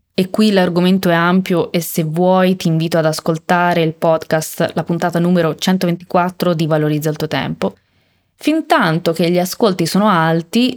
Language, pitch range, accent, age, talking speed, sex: Italian, 160-210 Hz, native, 20-39, 160 wpm, female